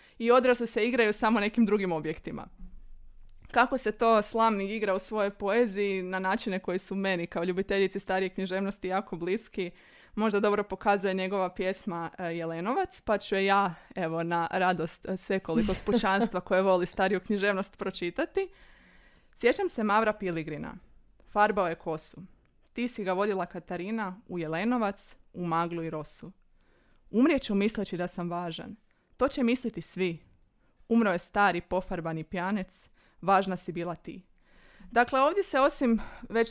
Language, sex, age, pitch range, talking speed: Croatian, female, 20-39, 185-230 Hz, 150 wpm